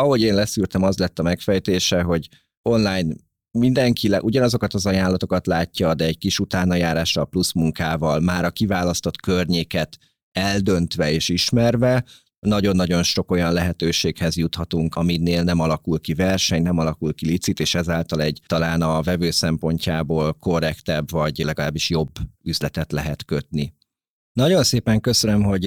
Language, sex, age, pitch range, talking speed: Hungarian, male, 30-49, 85-100 Hz, 145 wpm